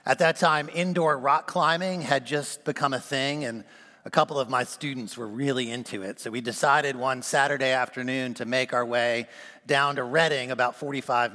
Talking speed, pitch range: 190 wpm, 120-150 Hz